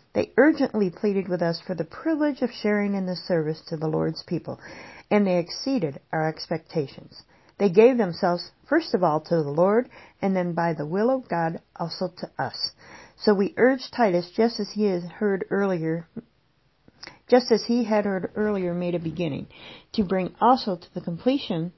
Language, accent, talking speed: English, American, 180 wpm